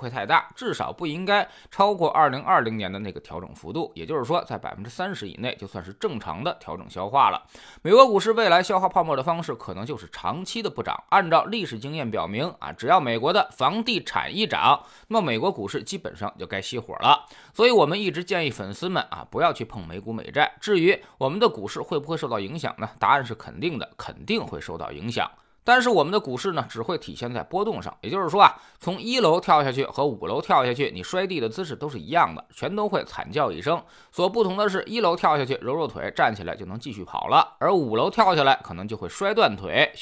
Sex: male